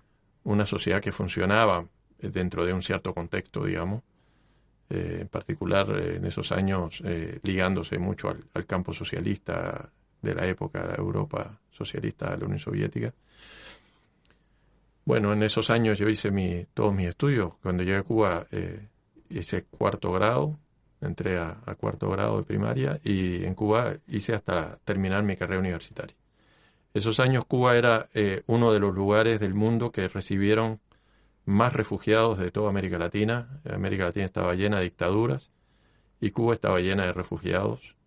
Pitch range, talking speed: 95-115 Hz, 155 wpm